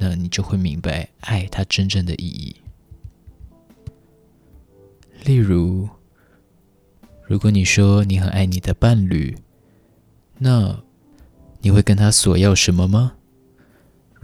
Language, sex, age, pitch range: Chinese, male, 20-39, 90-105 Hz